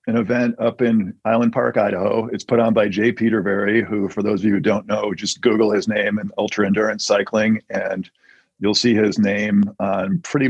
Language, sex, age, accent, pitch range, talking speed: English, male, 50-69, American, 100-115 Hz, 205 wpm